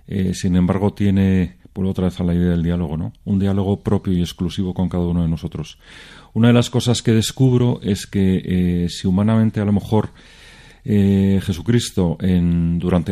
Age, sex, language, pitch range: 40-59, male, Spanish, 90-105 Hz